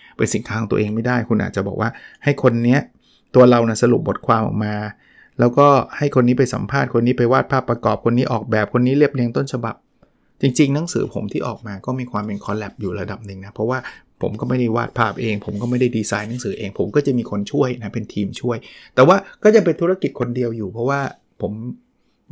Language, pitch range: Thai, 110-135 Hz